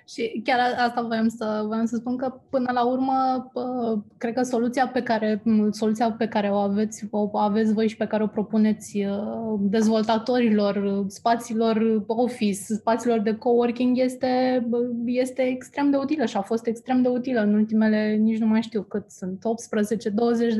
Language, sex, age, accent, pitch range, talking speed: Romanian, female, 20-39, native, 210-240 Hz, 160 wpm